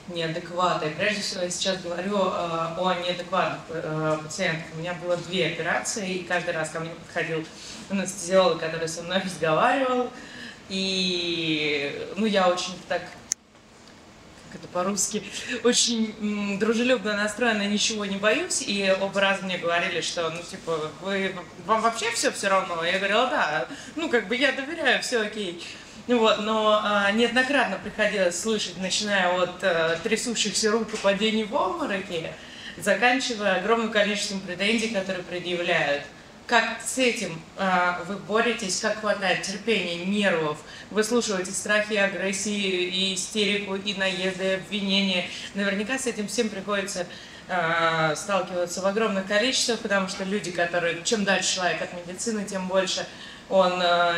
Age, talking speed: 20-39, 140 wpm